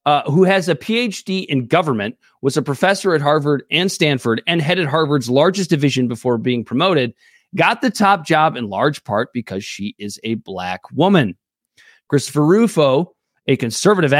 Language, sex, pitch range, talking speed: English, male, 125-185 Hz, 165 wpm